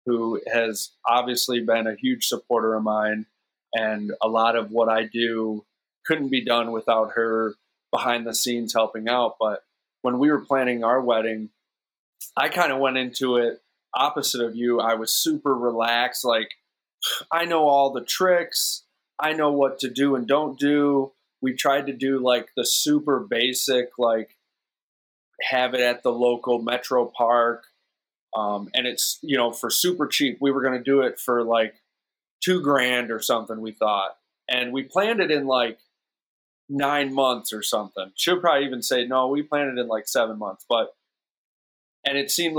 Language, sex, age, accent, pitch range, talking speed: English, male, 20-39, American, 115-140 Hz, 175 wpm